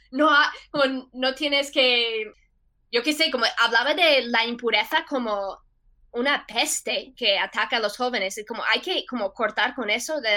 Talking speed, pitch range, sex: 175 wpm, 220-265 Hz, female